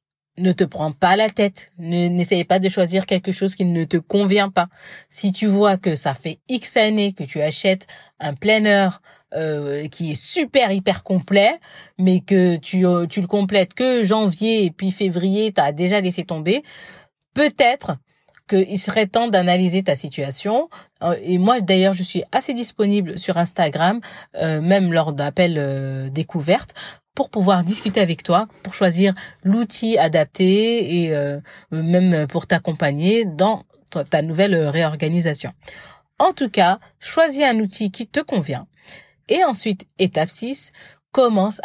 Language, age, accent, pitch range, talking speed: French, 40-59, French, 170-215 Hz, 155 wpm